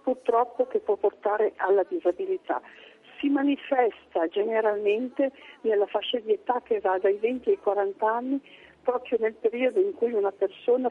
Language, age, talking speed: Italian, 50-69, 150 wpm